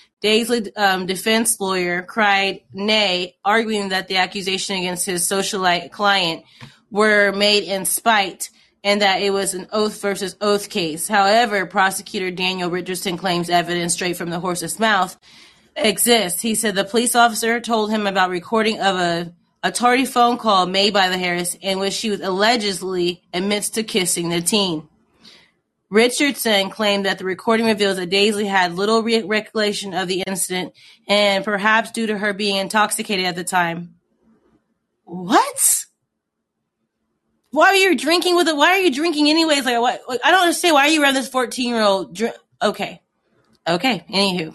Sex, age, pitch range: female, 30-49, 185-225 Hz